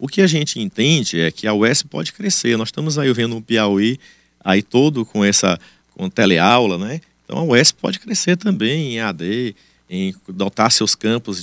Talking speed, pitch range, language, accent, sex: 195 wpm, 100-135 Hz, Portuguese, Brazilian, male